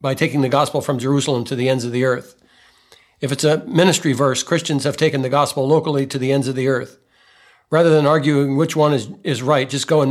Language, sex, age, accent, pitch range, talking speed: English, male, 60-79, American, 130-150 Hz, 235 wpm